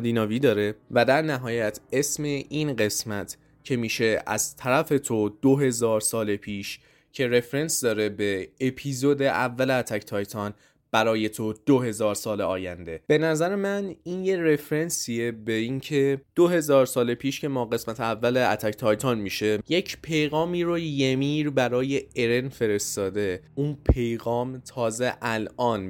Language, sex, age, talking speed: Persian, male, 20-39, 145 wpm